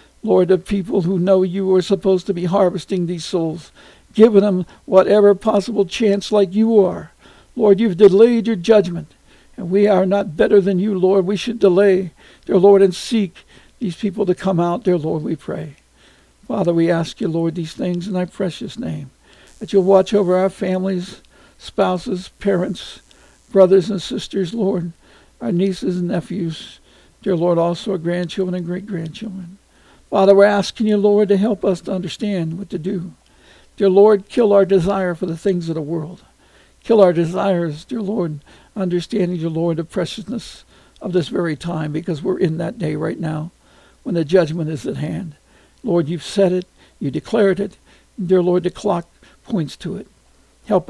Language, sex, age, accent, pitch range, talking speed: English, male, 60-79, American, 175-200 Hz, 180 wpm